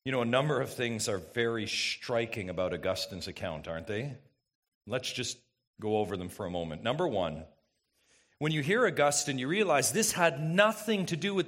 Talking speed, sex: 190 wpm, male